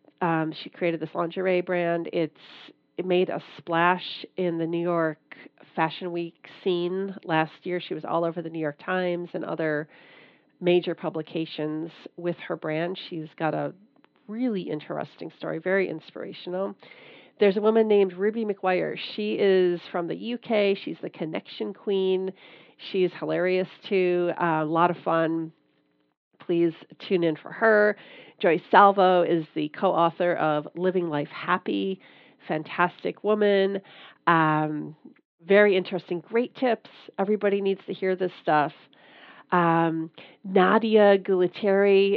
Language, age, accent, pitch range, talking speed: English, 40-59, American, 165-195 Hz, 140 wpm